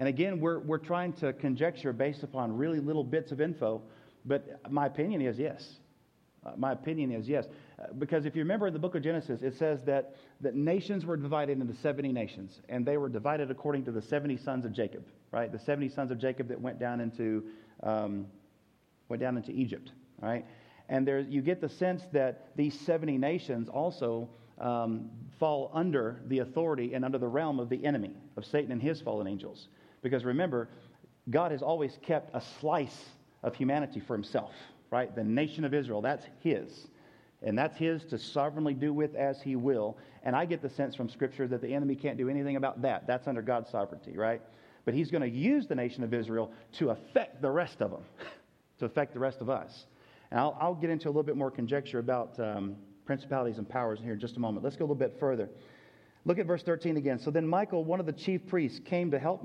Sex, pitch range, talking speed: male, 120-150 Hz, 215 wpm